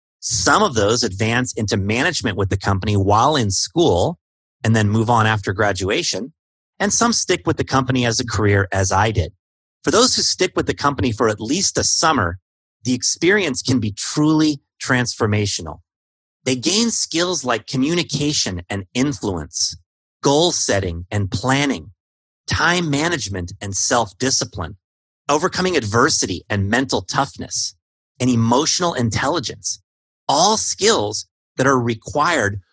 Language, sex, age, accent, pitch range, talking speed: English, male, 30-49, American, 95-130 Hz, 140 wpm